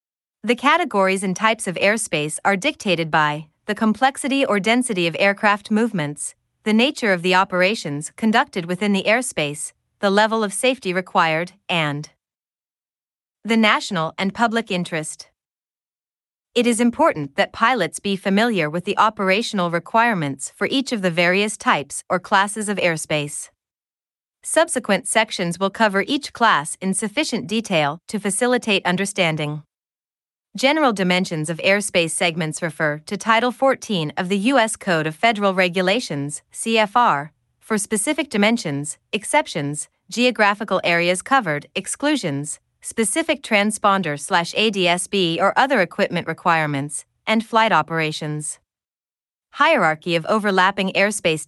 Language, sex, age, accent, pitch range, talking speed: English, female, 30-49, American, 170-225 Hz, 125 wpm